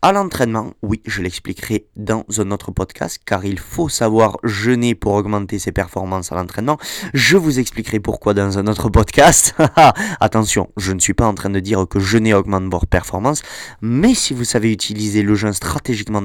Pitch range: 105-140 Hz